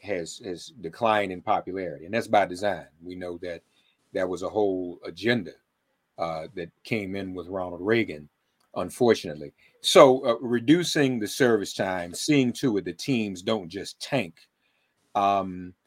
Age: 40-59